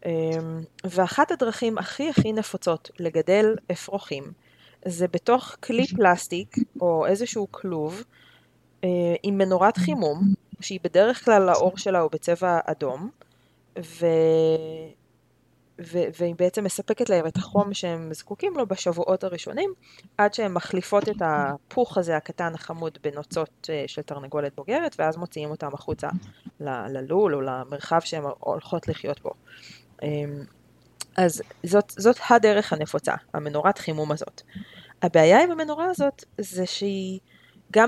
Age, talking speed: 20-39, 120 wpm